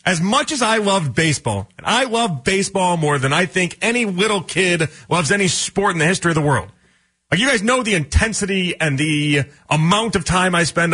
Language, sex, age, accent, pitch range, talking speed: English, male, 30-49, American, 125-205 Hz, 215 wpm